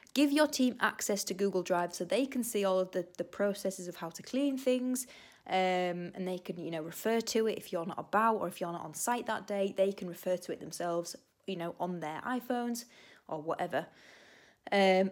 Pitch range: 180-230 Hz